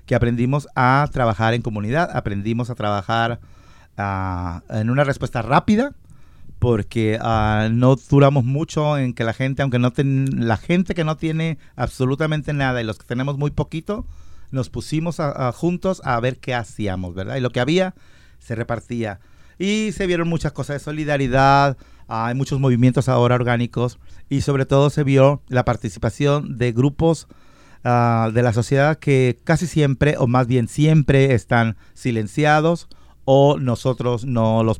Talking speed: 160 wpm